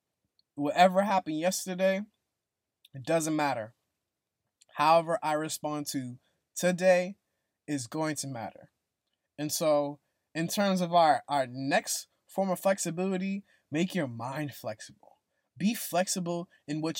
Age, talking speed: 20-39, 120 wpm